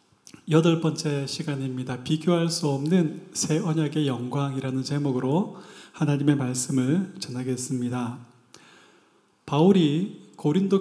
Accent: native